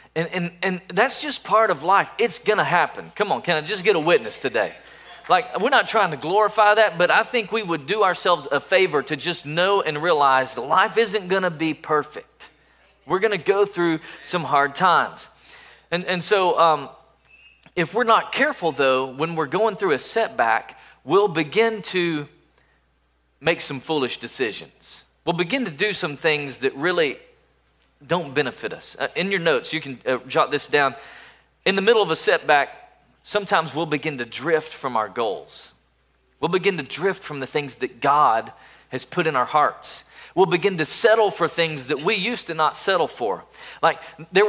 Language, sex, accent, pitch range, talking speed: English, male, American, 145-200 Hz, 190 wpm